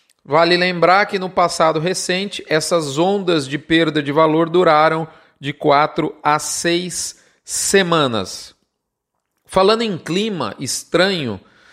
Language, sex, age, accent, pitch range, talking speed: Portuguese, male, 40-59, Brazilian, 155-190 Hz, 115 wpm